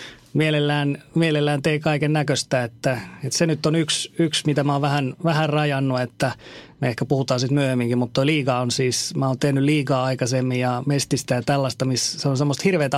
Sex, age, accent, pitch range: male, 30-49, native, 130-150 Hz